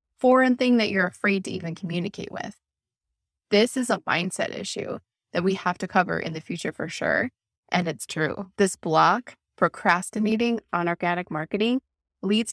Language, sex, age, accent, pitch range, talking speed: English, female, 20-39, American, 180-215 Hz, 165 wpm